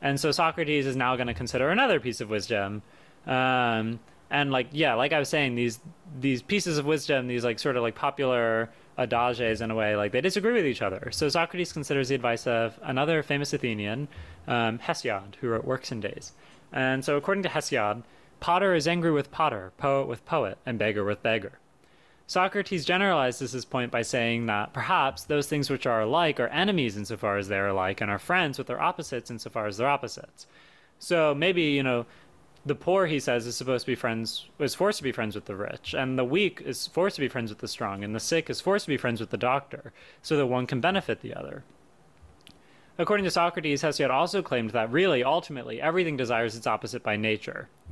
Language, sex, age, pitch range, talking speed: English, male, 30-49, 115-150 Hz, 215 wpm